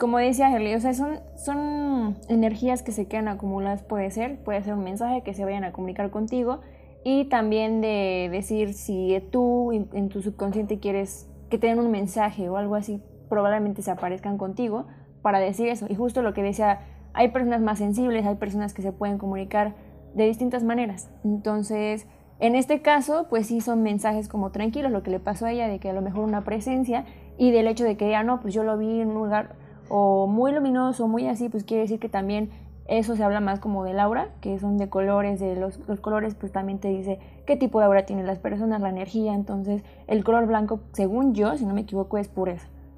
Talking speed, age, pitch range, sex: 220 wpm, 20-39, 200-230 Hz, female